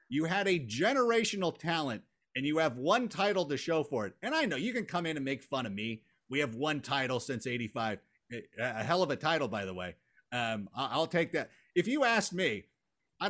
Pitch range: 125-175 Hz